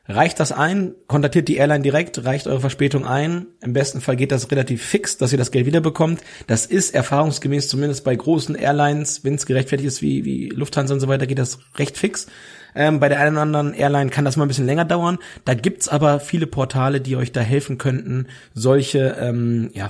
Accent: German